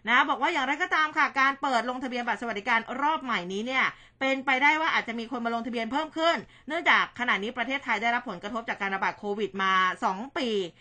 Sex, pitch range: female, 215-275 Hz